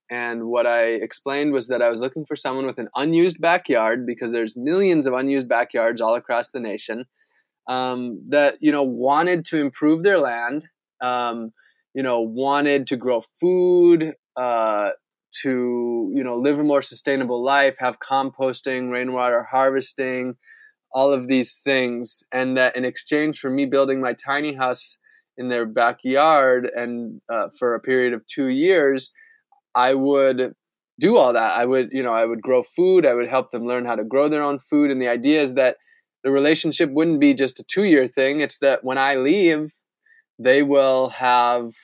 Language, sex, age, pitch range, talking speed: English, male, 20-39, 125-150 Hz, 180 wpm